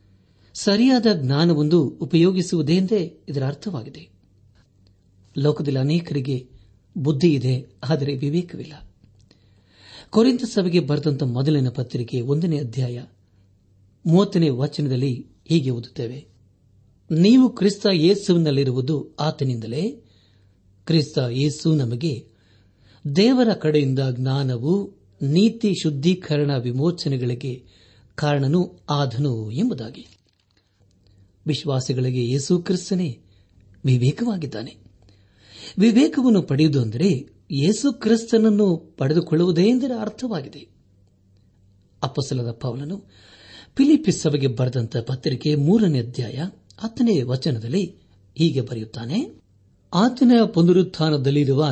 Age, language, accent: 60-79, Kannada, native